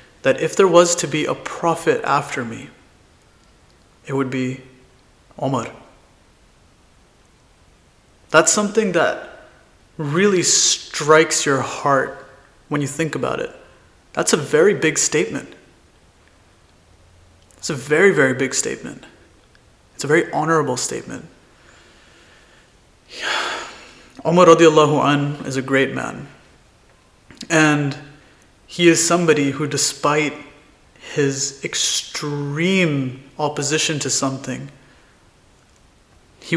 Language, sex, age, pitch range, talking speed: English, male, 30-49, 135-160 Hz, 100 wpm